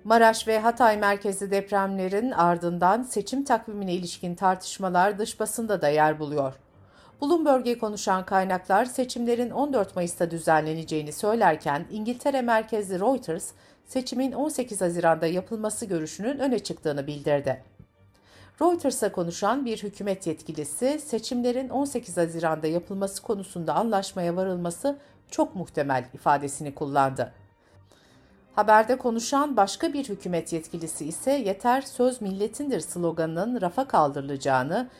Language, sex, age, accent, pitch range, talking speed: Turkish, female, 60-79, native, 160-240 Hz, 110 wpm